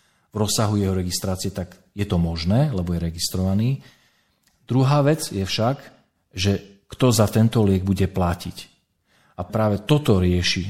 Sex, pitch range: male, 95-115 Hz